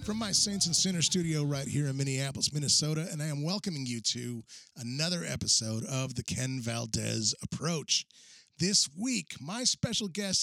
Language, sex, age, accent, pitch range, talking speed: English, male, 30-49, American, 125-165 Hz, 165 wpm